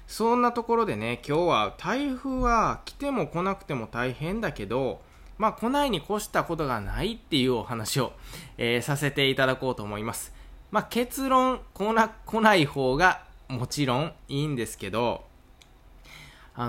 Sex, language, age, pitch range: male, Japanese, 20-39, 120-175 Hz